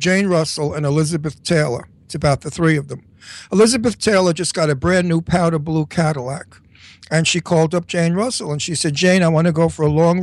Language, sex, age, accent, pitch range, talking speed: English, male, 60-79, American, 150-190 Hz, 225 wpm